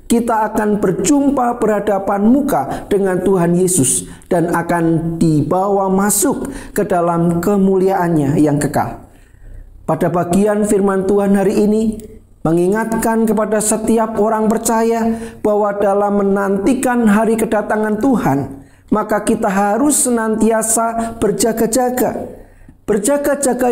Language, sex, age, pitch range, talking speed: Indonesian, male, 40-59, 195-235 Hz, 100 wpm